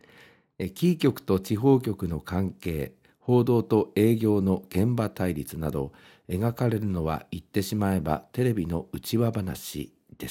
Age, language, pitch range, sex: 50-69, Japanese, 90-120 Hz, male